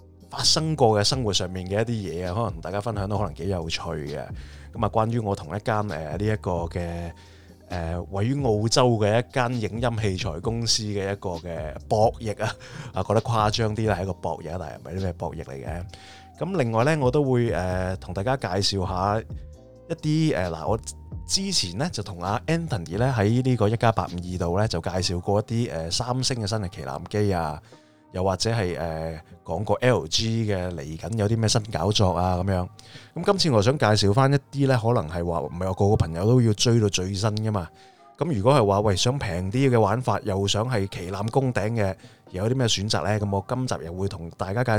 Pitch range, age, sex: 90-120 Hz, 20-39, male